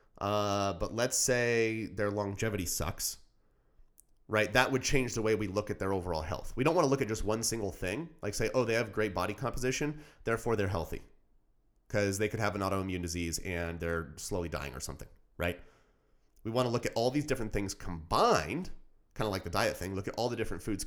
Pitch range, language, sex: 90-110 Hz, English, male